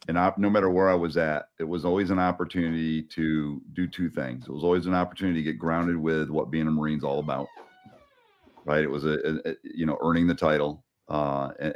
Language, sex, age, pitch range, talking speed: English, male, 40-59, 75-90 Hz, 230 wpm